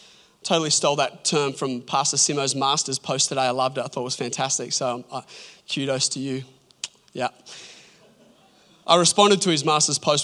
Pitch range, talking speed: 150-220 Hz, 175 wpm